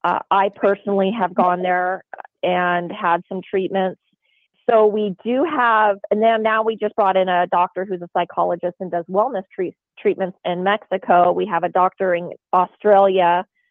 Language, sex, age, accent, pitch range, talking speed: English, female, 30-49, American, 180-210 Hz, 170 wpm